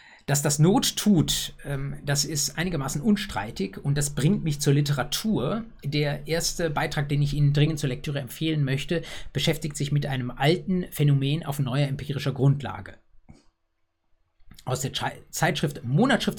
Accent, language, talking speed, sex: German, German, 145 wpm, male